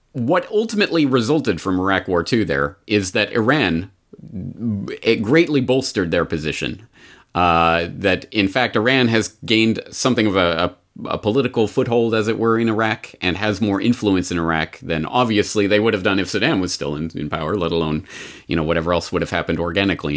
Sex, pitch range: male, 90-115 Hz